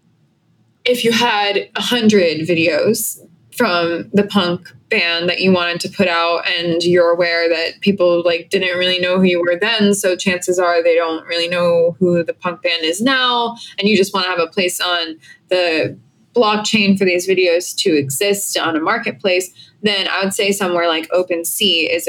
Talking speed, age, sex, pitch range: 185 wpm, 20-39, female, 170-200 Hz